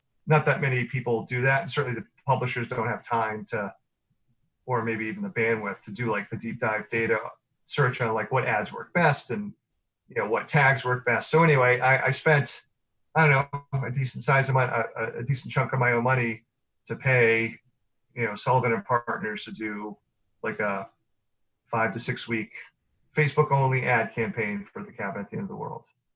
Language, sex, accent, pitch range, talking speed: English, male, American, 115-150 Hz, 195 wpm